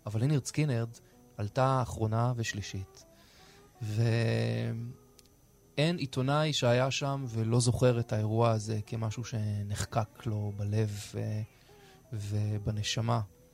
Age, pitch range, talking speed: 20-39, 115-135 Hz, 95 wpm